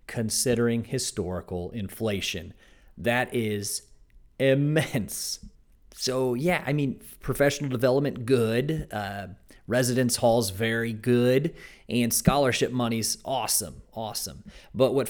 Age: 40-59